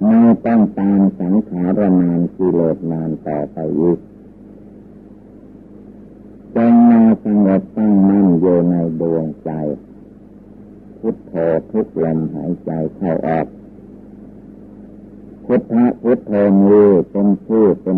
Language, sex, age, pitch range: Thai, male, 60-79, 85-105 Hz